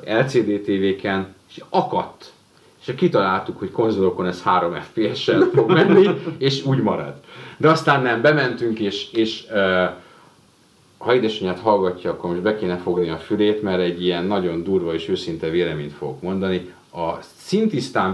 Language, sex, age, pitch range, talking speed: Hungarian, male, 30-49, 90-130 Hz, 150 wpm